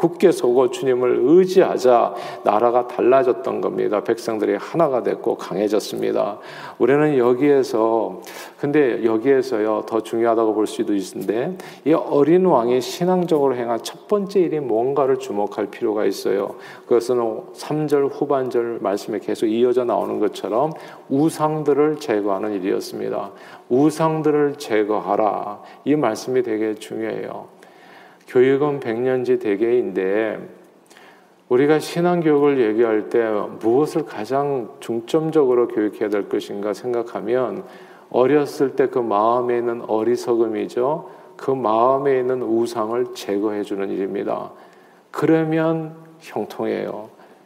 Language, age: Korean, 40-59